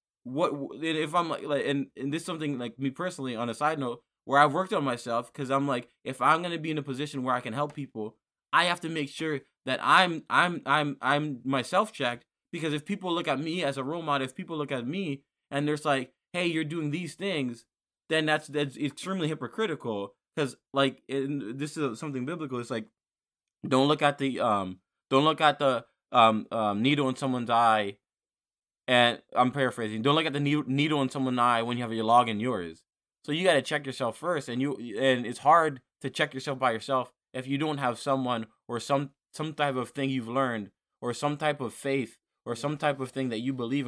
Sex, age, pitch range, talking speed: male, 20-39, 125-150 Hz, 220 wpm